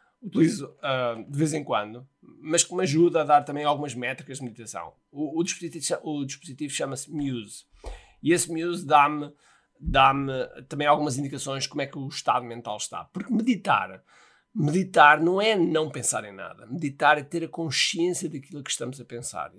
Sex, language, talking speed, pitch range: male, Portuguese, 180 wpm, 125-165 Hz